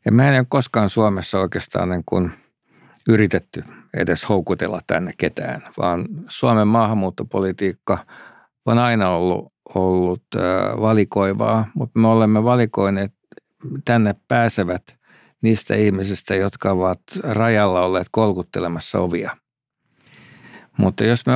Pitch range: 100-115 Hz